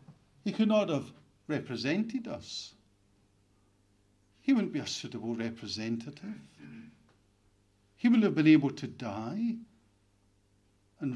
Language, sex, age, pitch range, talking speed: English, male, 60-79, 100-160 Hz, 110 wpm